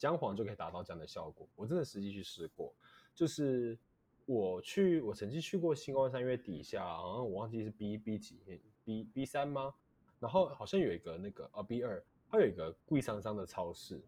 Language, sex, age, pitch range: Chinese, male, 20-39, 110-160 Hz